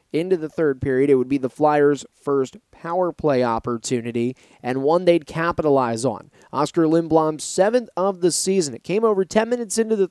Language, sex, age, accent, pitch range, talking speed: English, male, 30-49, American, 140-180 Hz, 185 wpm